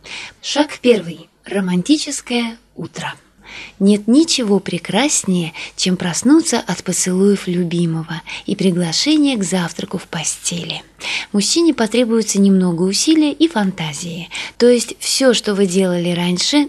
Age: 20-39